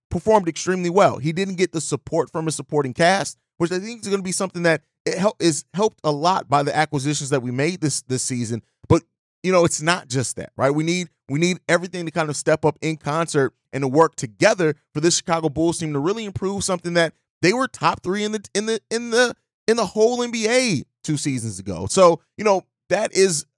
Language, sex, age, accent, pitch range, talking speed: English, male, 30-49, American, 145-175 Hz, 230 wpm